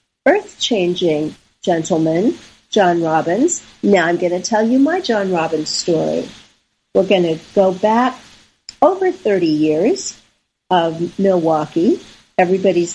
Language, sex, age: English, female, 50-69